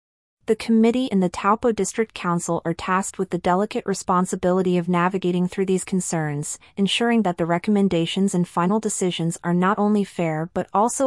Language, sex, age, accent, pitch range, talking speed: English, female, 30-49, American, 175-205 Hz, 170 wpm